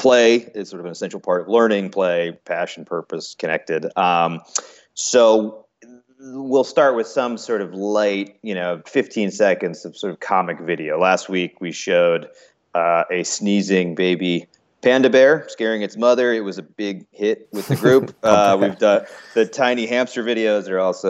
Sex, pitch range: male, 90-130 Hz